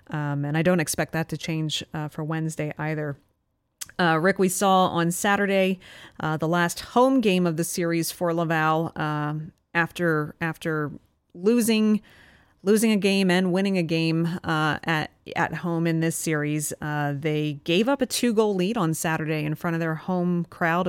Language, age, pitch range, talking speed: English, 30-49, 160-200 Hz, 180 wpm